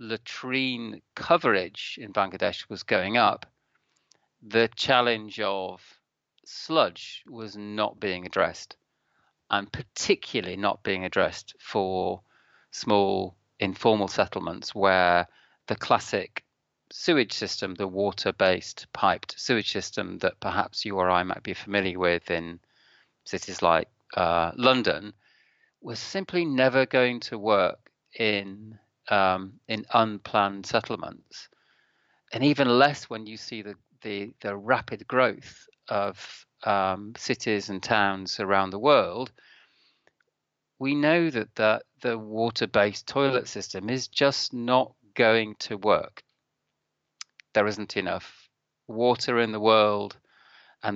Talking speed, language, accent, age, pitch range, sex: 115 wpm, English, British, 40-59, 100-125 Hz, male